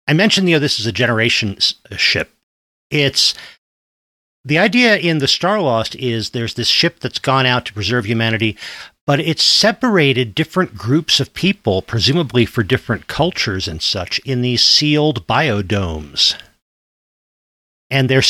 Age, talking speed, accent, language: 50-69, 150 wpm, American, English